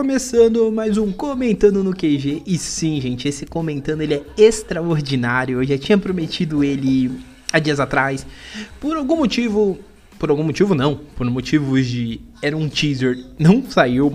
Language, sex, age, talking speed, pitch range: Portuguese, male, 20-39, 155 wpm, 140-205 Hz